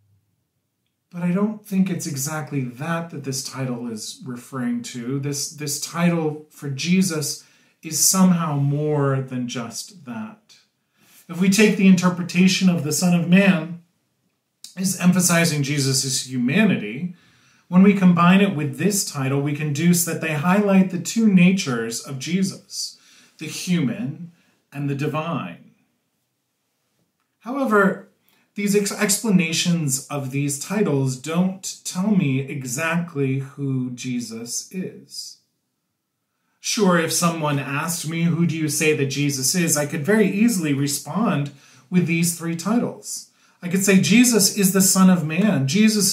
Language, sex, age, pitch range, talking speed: English, male, 30-49, 140-190 Hz, 135 wpm